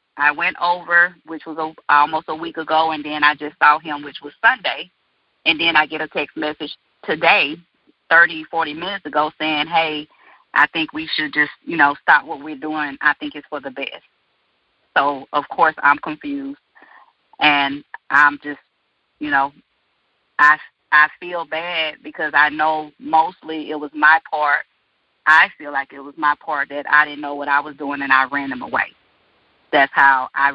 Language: English